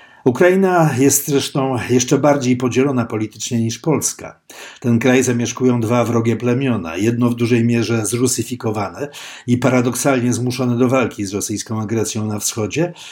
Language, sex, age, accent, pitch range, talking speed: Polish, male, 50-69, native, 110-135 Hz, 135 wpm